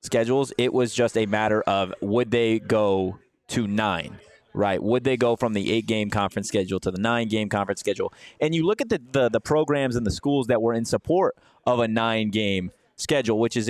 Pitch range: 110-145 Hz